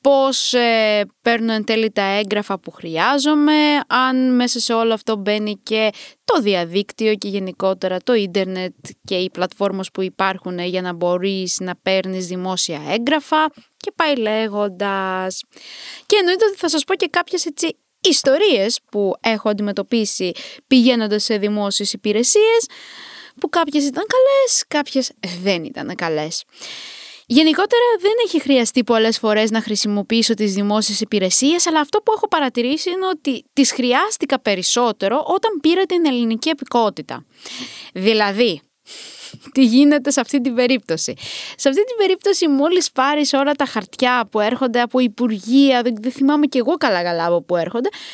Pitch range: 205-300 Hz